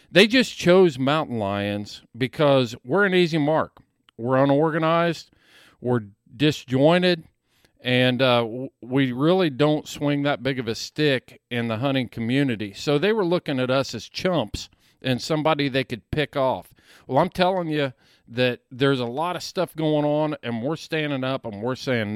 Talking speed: 170 wpm